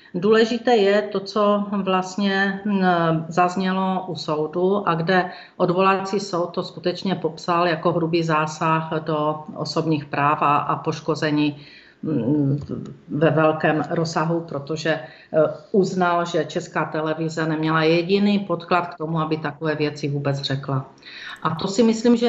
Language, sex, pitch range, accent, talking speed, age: Czech, female, 165-195 Hz, native, 125 wpm, 40-59